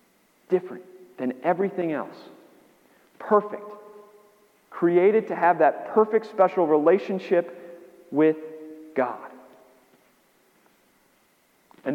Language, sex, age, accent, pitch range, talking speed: English, male, 40-59, American, 130-180 Hz, 75 wpm